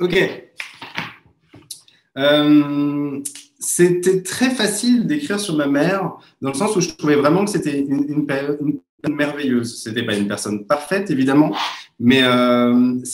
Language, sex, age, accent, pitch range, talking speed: French, male, 30-49, French, 125-155 Hz, 135 wpm